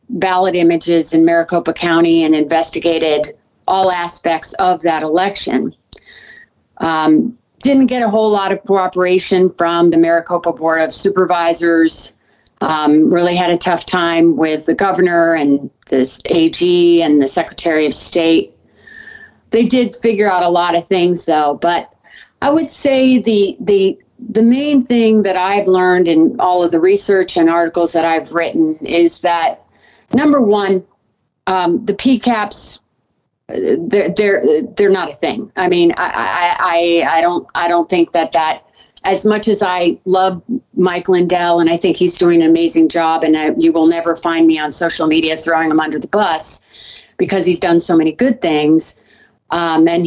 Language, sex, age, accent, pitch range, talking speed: English, female, 40-59, American, 165-200 Hz, 165 wpm